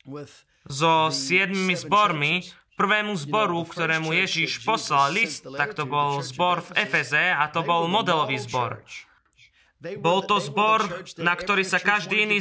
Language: Slovak